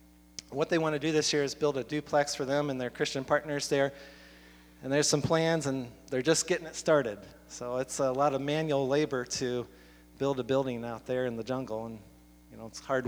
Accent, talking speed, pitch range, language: American, 225 wpm, 125-150 Hz, English